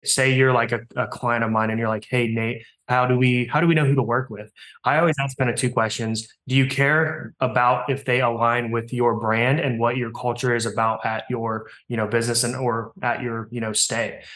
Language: English